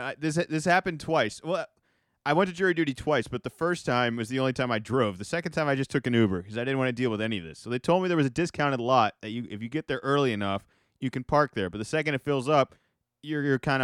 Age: 30-49